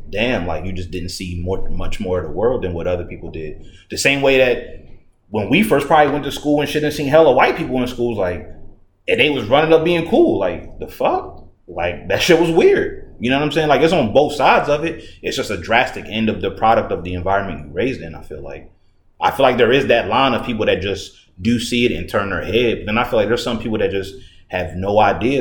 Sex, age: male, 30-49